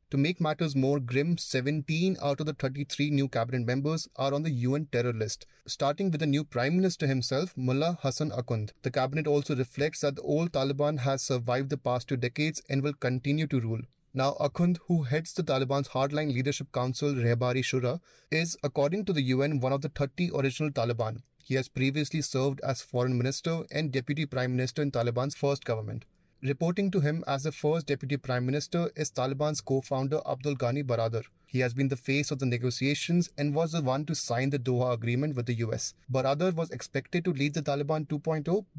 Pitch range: 130-150 Hz